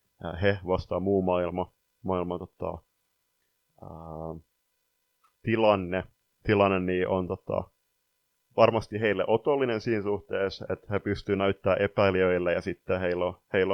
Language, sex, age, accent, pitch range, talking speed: Finnish, male, 30-49, native, 95-105 Hz, 120 wpm